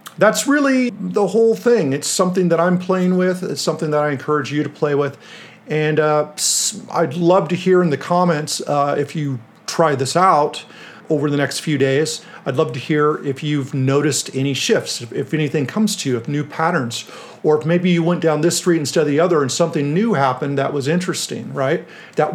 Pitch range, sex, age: 135-175 Hz, male, 50-69